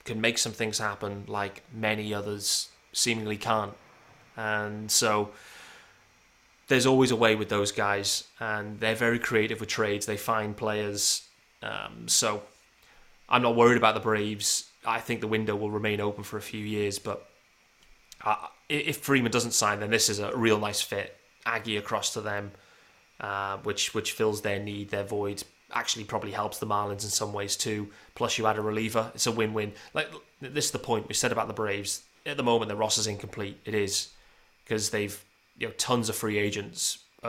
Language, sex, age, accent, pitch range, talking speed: English, male, 20-39, British, 105-115 Hz, 190 wpm